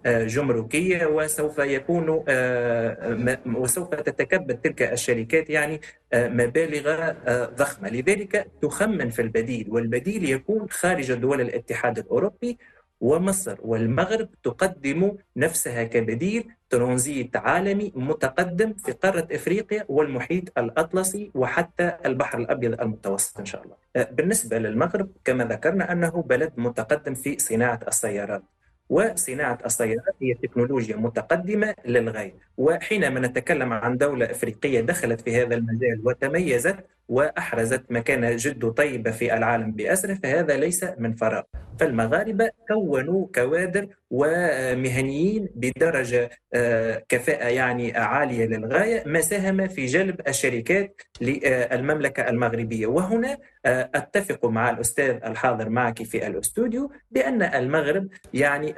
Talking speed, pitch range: 105 wpm, 120-180 Hz